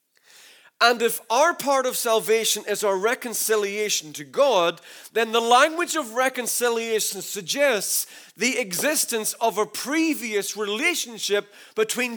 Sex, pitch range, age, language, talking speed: male, 210-275 Hz, 40-59, English, 120 wpm